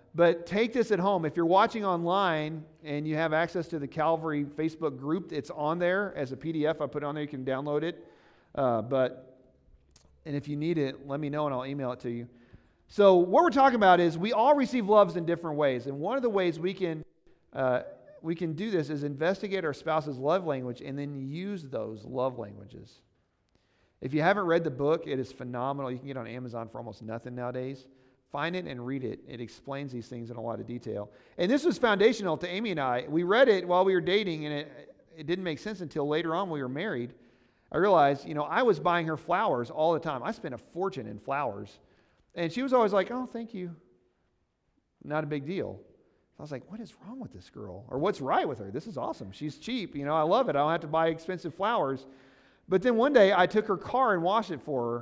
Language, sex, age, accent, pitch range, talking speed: English, male, 40-59, American, 130-180 Hz, 240 wpm